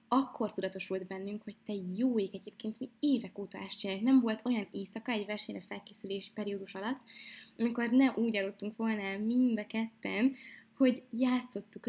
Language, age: Hungarian, 20-39